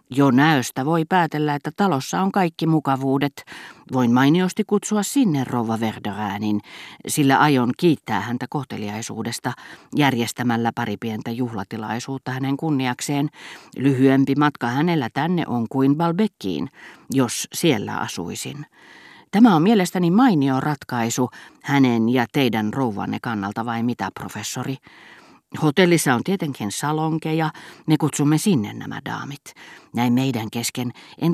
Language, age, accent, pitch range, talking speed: Finnish, 40-59, native, 115-155 Hz, 115 wpm